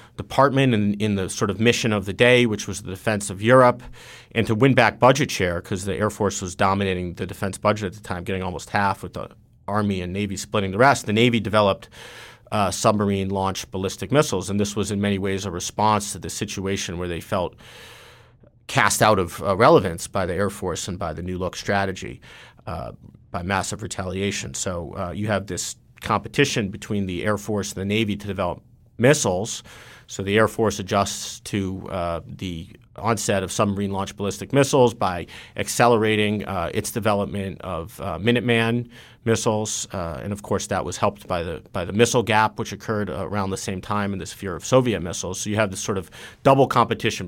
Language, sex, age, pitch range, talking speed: English, male, 40-59, 95-115 Hz, 200 wpm